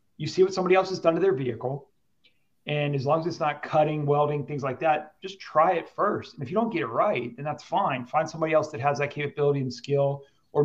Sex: male